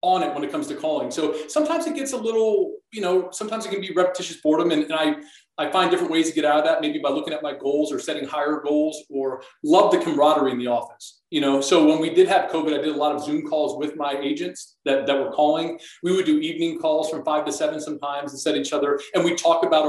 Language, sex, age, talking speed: English, male, 40-59, 270 wpm